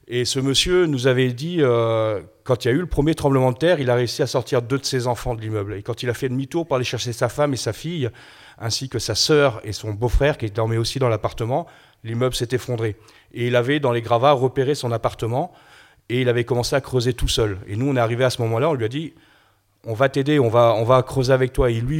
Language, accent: French, French